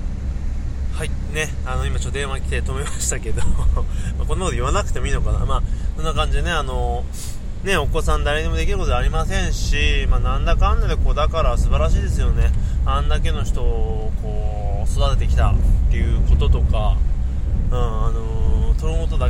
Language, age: Japanese, 20-39